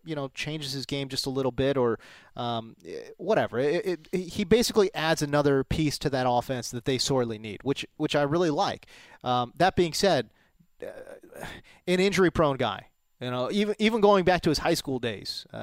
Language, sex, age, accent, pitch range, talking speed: English, male, 30-49, American, 130-175 Hz, 195 wpm